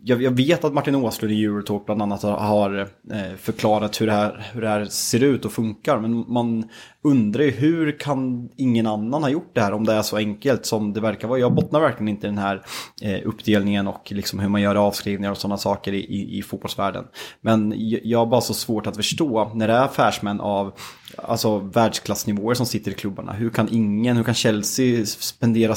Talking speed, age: 205 wpm, 20-39